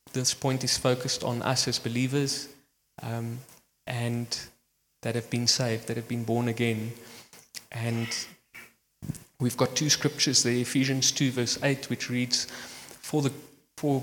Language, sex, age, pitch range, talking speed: English, male, 20-39, 120-130 Hz, 145 wpm